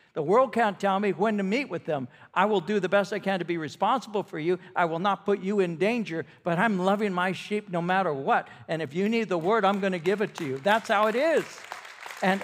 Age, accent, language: 60-79, American, English